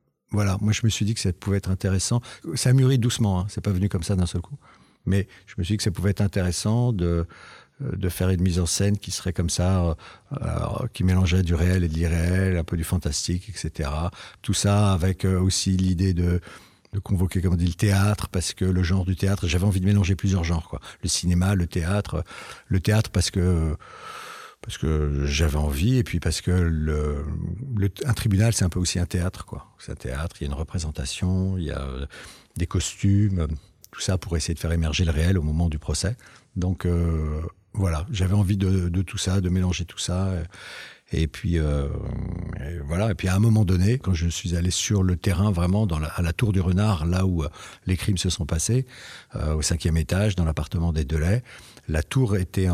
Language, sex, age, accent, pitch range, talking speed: French, male, 50-69, French, 85-100 Hz, 220 wpm